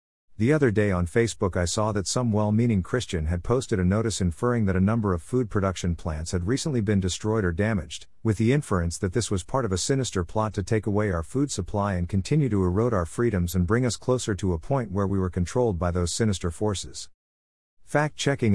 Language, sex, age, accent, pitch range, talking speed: English, male, 50-69, American, 90-115 Hz, 220 wpm